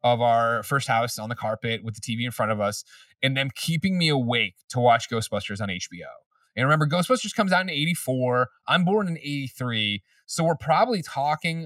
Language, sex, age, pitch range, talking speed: English, male, 20-39, 125-165 Hz, 200 wpm